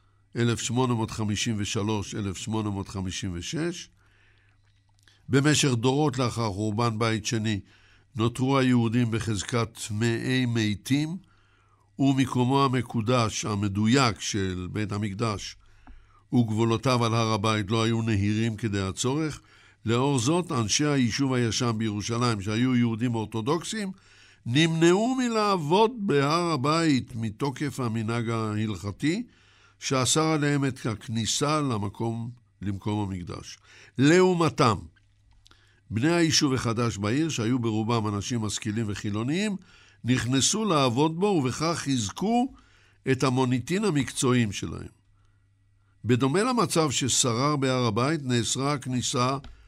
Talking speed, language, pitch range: 100 wpm, English, 105-140 Hz